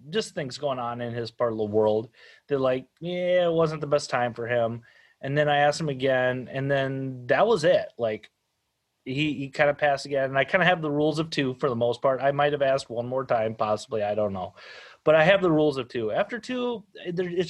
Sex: male